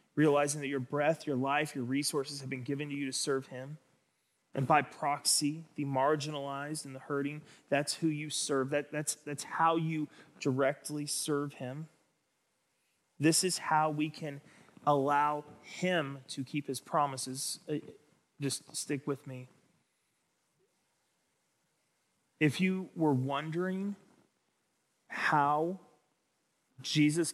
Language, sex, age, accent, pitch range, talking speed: English, male, 30-49, American, 135-150 Hz, 125 wpm